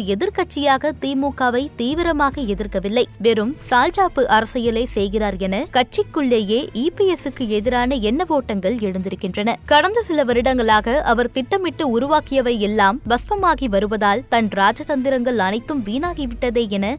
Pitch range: 215-275 Hz